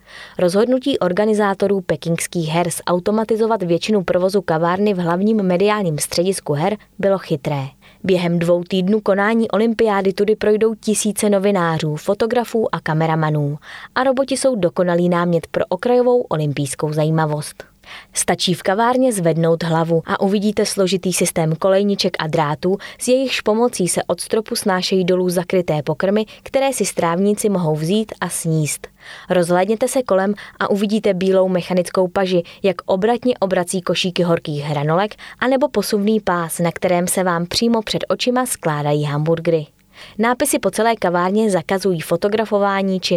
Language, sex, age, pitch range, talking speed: Czech, female, 20-39, 170-215 Hz, 135 wpm